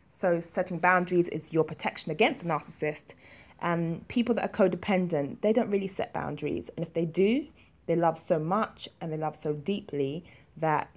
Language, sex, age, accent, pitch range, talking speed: English, female, 20-39, British, 155-185 Hz, 180 wpm